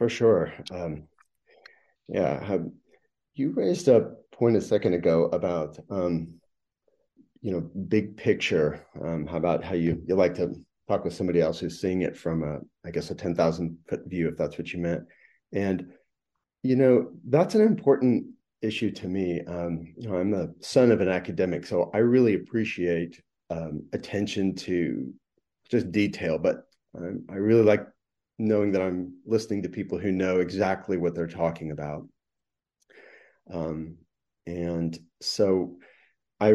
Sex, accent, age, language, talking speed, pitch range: male, American, 30-49, English, 155 wpm, 85-110 Hz